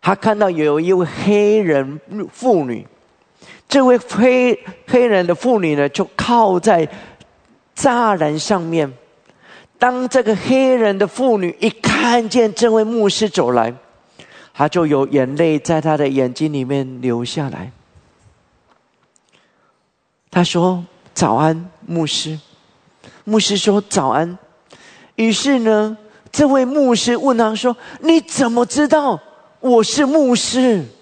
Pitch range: 170-250 Hz